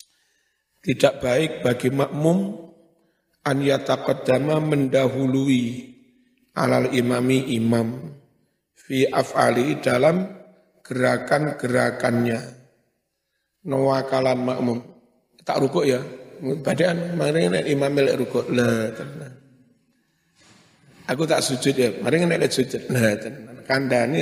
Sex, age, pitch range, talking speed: male, 50-69, 120-155 Hz, 90 wpm